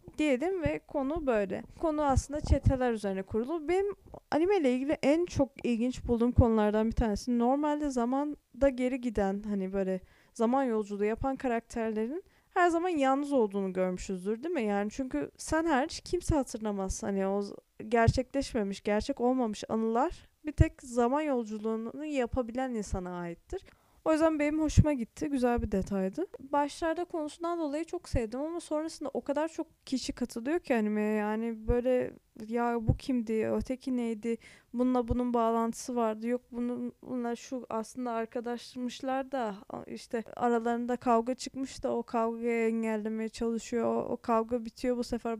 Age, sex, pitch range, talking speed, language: 10-29, female, 225-275 Hz, 145 wpm, Turkish